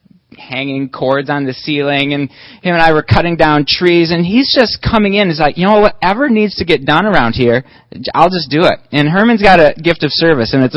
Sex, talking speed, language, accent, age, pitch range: male, 235 wpm, English, American, 30-49, 135-170 Hz